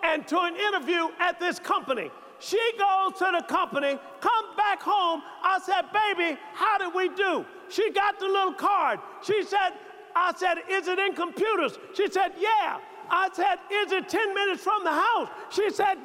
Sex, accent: male, American